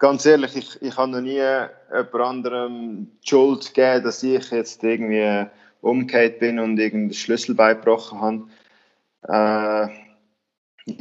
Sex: male